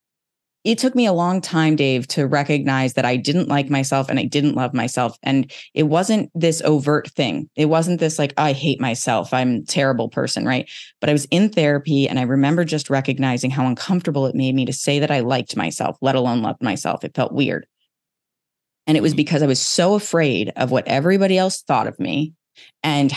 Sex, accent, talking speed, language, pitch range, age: female, American, 210 wpm, English, 135-170 Hz, 20-39